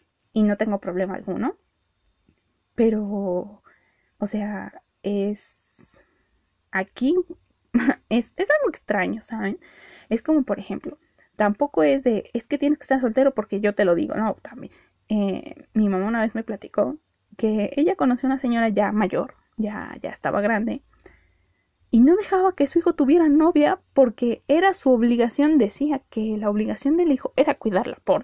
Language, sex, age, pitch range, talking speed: Spanish, female, 20-39, 205-270 Hz, 160 wpm